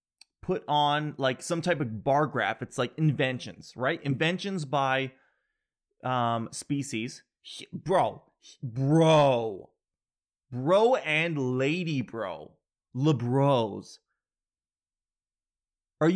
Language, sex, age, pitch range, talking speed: English, male, 30-49, 130-180 Hz, 100 wpm